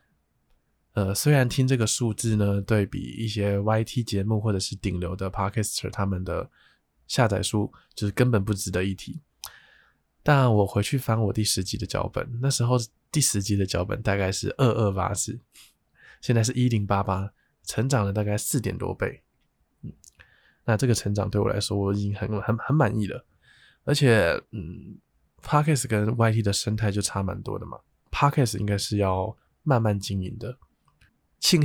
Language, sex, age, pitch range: Chinese, male, 20-39, 100-120 Hz